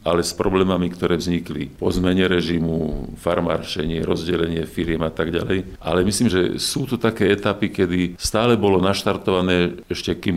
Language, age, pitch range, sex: Slovak, 50-69, 85-95 Hz, male